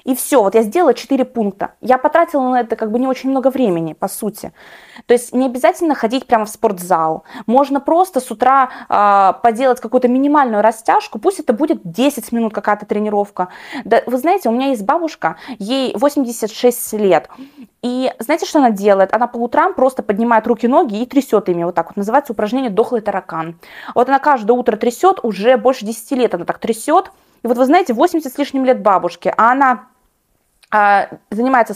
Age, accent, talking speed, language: 20-39, native, 185 wpm, Russian